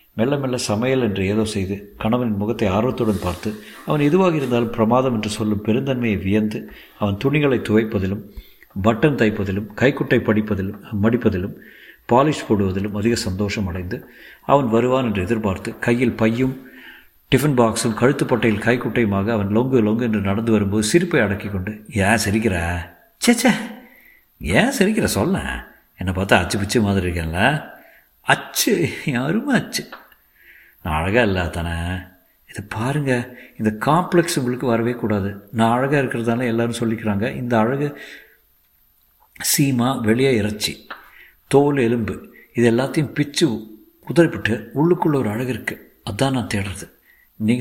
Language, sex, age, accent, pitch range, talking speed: Tamil, male, 50-69, native, 105-130 Hz, 125 wpm